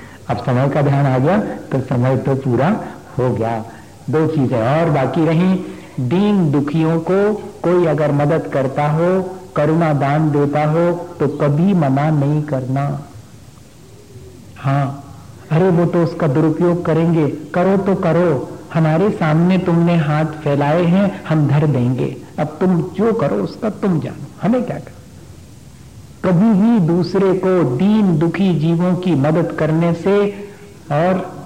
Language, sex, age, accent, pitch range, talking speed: Hindi, male, 60-79, native, 140-175 Hz, 145 wpm